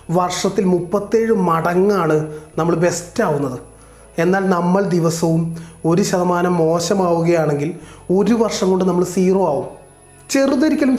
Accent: native